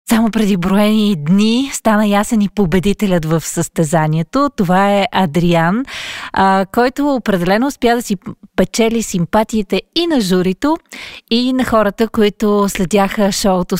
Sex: female